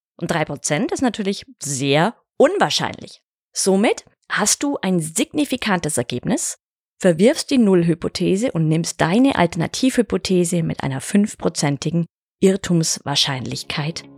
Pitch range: 150-210 Hz